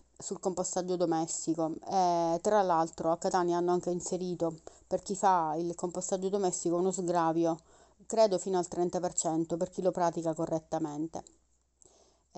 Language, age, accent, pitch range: Italian, 30-49, native, 165-190 Hz